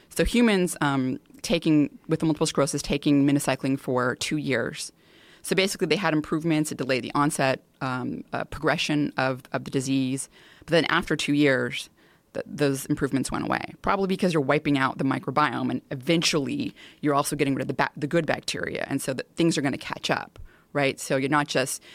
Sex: female